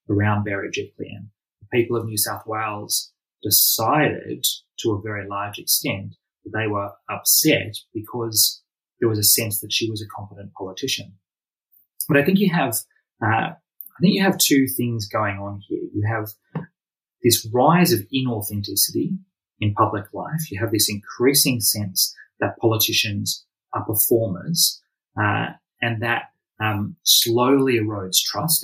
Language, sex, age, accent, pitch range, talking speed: English, male, 20-39, Australian, 105-130 Hz, 145 wpm